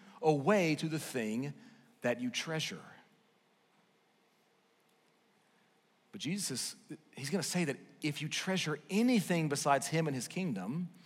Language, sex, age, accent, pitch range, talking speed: English, male, 40-59, American, 160-215 Hz, 120 wpm